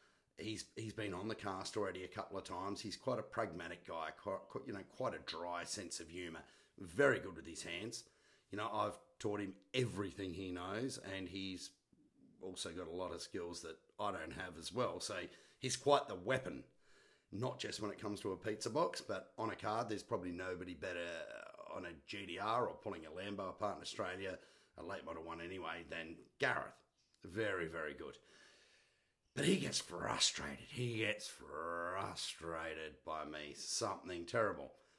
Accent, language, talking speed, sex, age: Australian, English, 180 wpm, male, 40-59